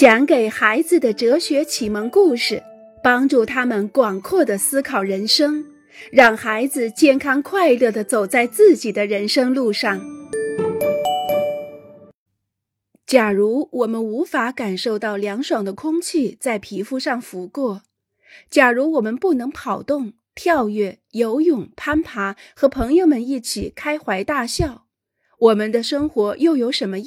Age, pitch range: 30-49, 205-285 Hz